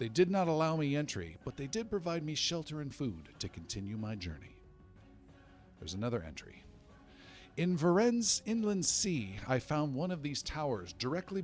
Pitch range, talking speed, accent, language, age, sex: 100-150 Hz, 170 wpm, American, English, 50-69, male